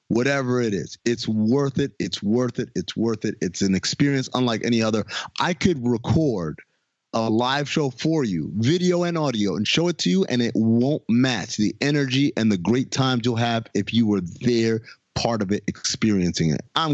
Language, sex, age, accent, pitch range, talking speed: English, male, 30-49, American, 110-145 Hz, 200 wpm